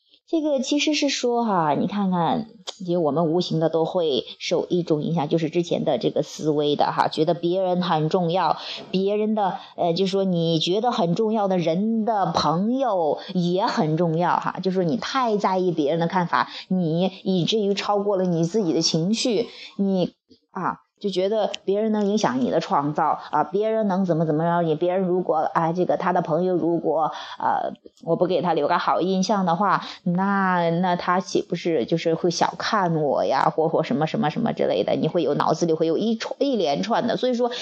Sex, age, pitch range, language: female, 20-39, 170-225 Hz, Chinese